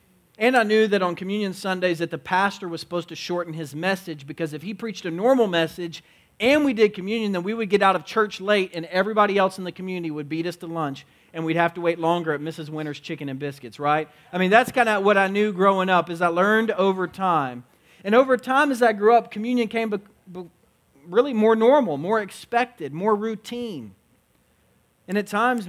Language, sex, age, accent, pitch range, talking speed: English, male, 40-59, American, 165-210 Hz, 215 wpm